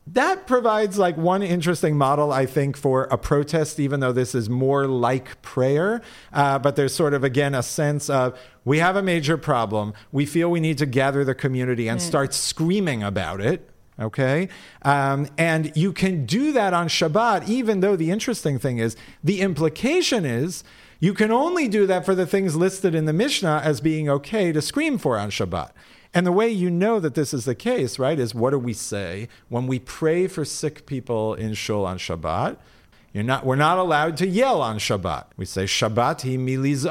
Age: 40-59